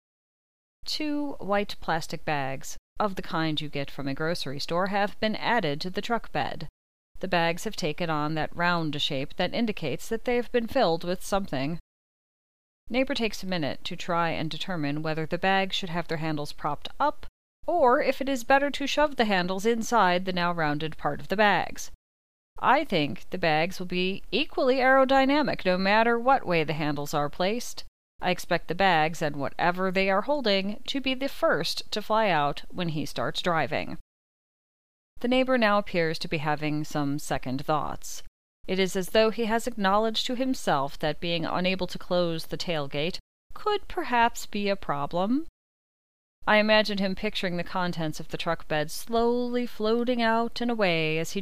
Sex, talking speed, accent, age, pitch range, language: female, 180 wpm, American, 40-59, 155-225 Hz, English